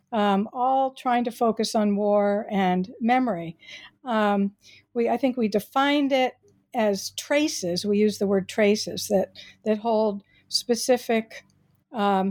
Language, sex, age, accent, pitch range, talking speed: English, female, 60-79, American, 200-250 Hz, 135 wpm